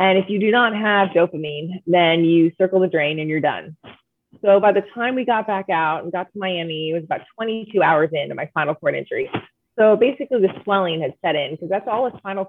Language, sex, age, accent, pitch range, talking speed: English, female, 30-49, American, 165-205 Hz, 235 wpm